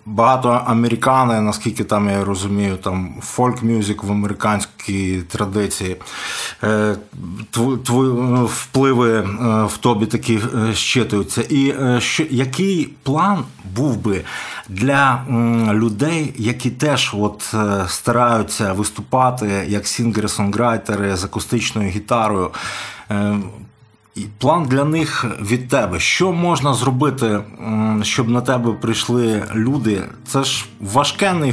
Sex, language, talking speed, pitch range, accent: male, Ukrainian, 100 wpm, 105-125 Hz, native